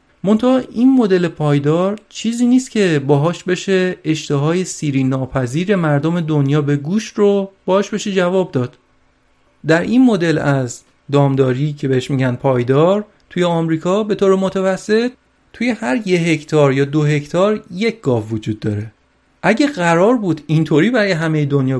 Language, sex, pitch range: Persian, male, 135-200 Hz